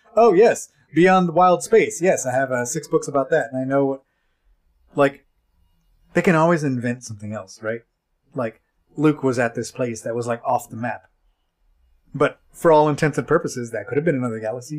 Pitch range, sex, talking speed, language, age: 115-150 Hz, male, 205 wpm, English, 30-49